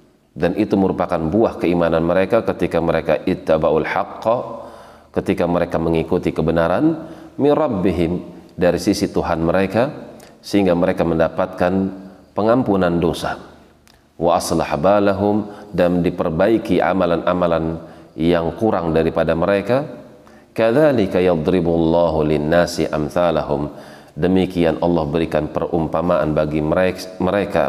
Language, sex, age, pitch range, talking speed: Indonesian, male, 40-59, 80-90 Hz, 95 wpm